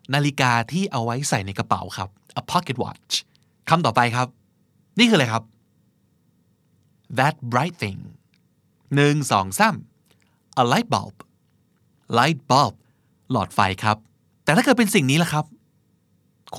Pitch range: 110-145 Hz